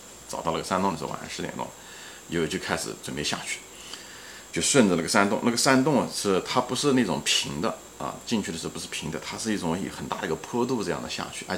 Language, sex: Chinese, male